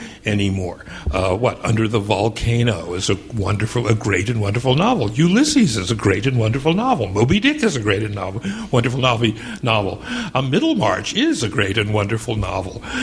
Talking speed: 175 wpm